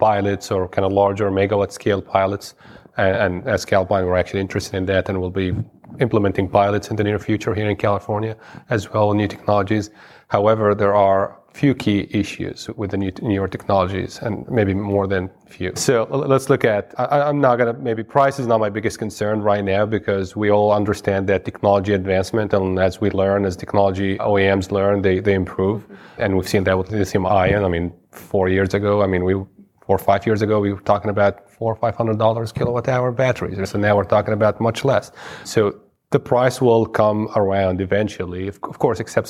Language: English